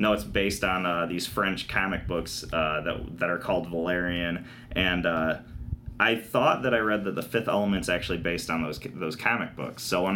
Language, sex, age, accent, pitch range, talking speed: English, male, 20-39, American, 90-115 Hz, 205 wpm